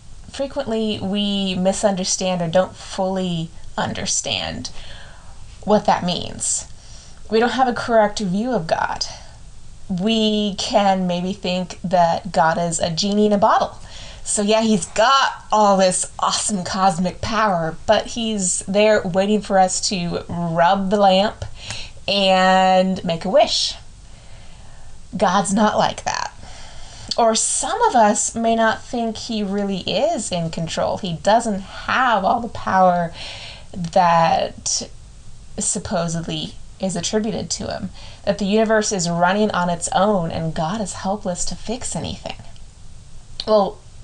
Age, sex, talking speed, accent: 20-39, female, 130 wpm, American